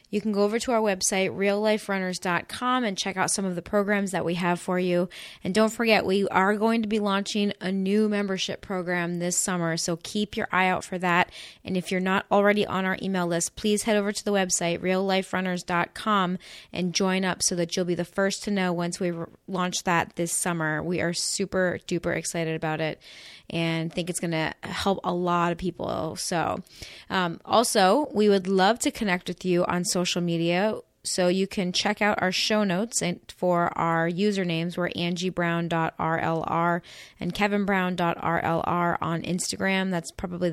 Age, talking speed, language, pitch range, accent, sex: 20-39, 185 wpm, English, 175-200 Hz, American, female